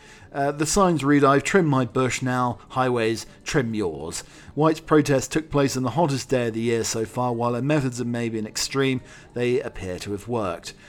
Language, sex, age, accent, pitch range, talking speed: English, male, 40-59, British, 115-140 Hz, 205 wpm